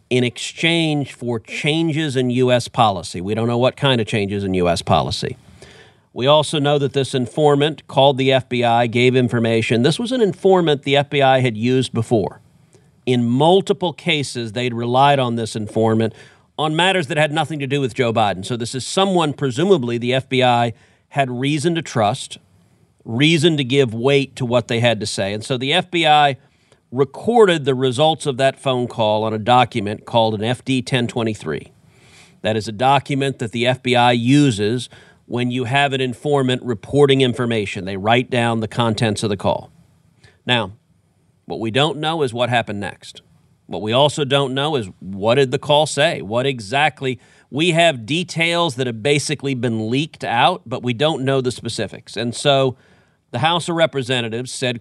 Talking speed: 175 wpm